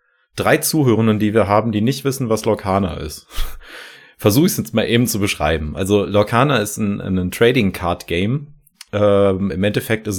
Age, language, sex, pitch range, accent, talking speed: 30-49, German, male, 95-125 Hz, German, 185 wpm